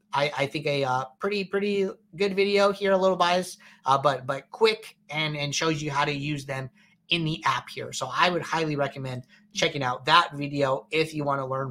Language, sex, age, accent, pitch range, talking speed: English, male, 30-49, American, 140-195 Hz, 215 wpm